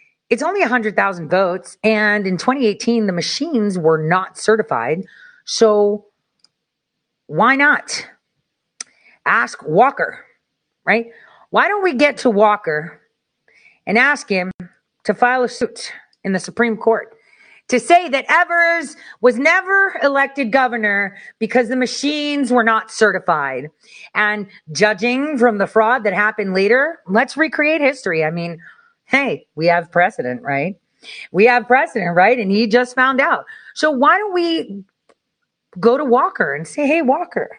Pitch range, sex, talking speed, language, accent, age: 205-285 Hz, female, 140 wpm, English, American, 40-59